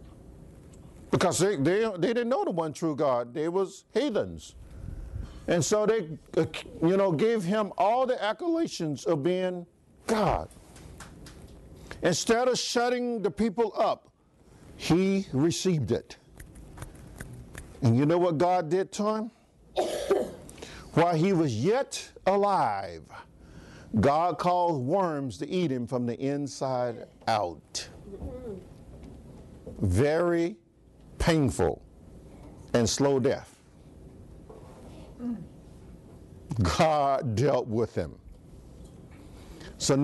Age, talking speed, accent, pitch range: 50-69, 100 wpm, American, 135-215 Hz